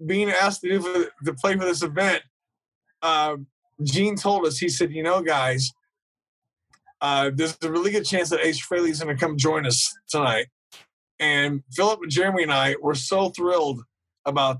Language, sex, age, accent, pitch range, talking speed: English, male, 30-49, American, 140-180 Hz, 180 wpm